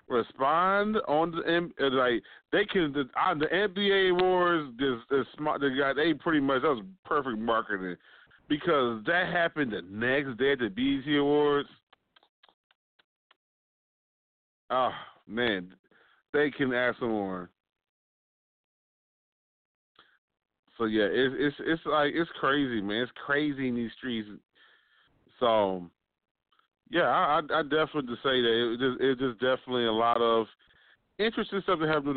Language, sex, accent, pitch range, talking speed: English, male, American, 120-150 Hz, 140 wpm